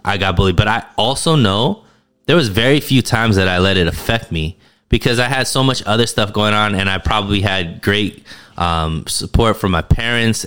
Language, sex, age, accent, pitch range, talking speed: English, male, 20-39, American, 95-120 Hz, 210 wpm